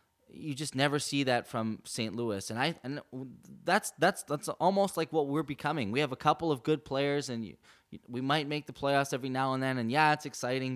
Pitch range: 105-135 Hz